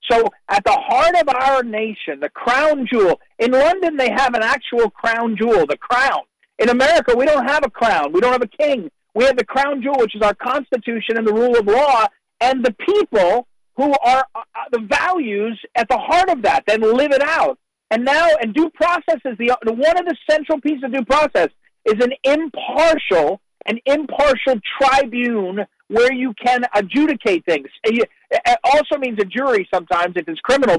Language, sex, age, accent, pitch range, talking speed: English, male, 50-69, American, 240-315 Hz, 190 wpm